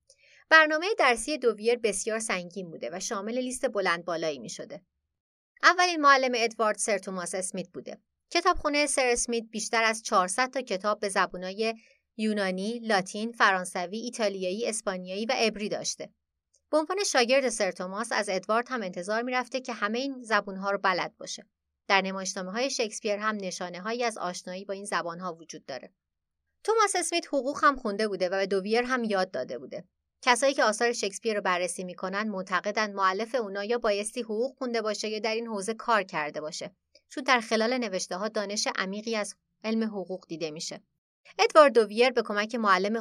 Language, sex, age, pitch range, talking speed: Persian, female, 30-49, 185-240 Hz, 160 wpm